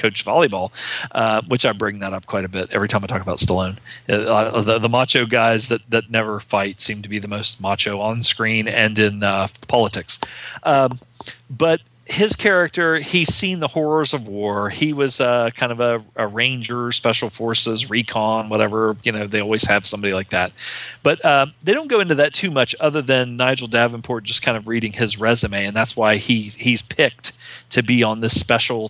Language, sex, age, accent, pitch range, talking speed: English, male, 40-59, American, 110-130 Hz, 200 wpm